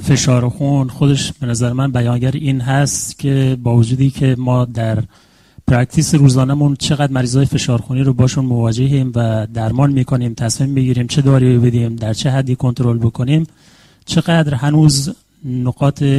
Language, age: Persian, 30-49